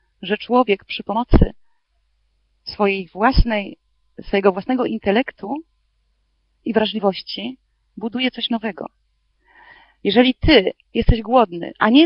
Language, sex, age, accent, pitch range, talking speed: Polish, female, 40-59, native, 215-290 Hz, 100 wpm